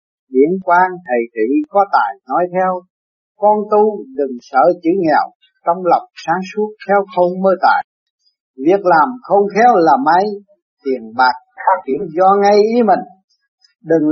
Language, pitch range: Vietnamese, 165-215 Hz